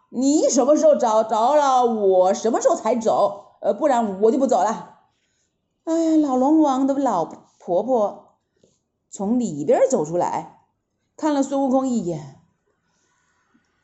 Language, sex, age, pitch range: Chinese, female, 30-49, 220-310 Hz